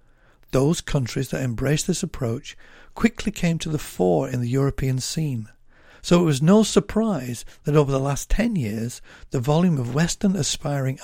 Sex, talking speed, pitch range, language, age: male, 170 wpm, 120-155 Hz, English, 50-69